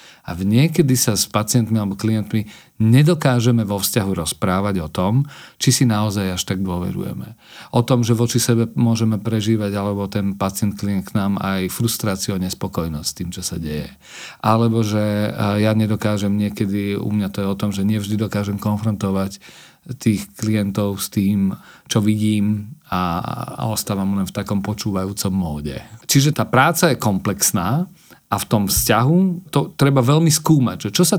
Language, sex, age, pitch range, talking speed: Slovak, male, 40-59, 100-125 Hz, 160 wpm